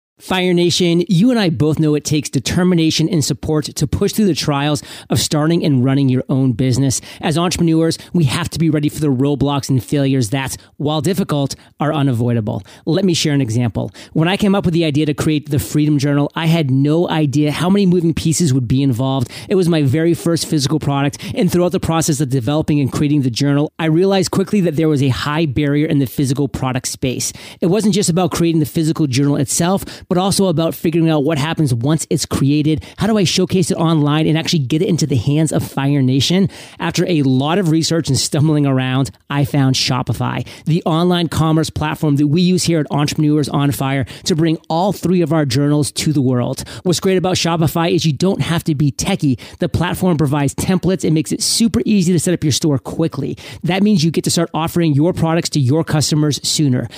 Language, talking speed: English, 220 wpm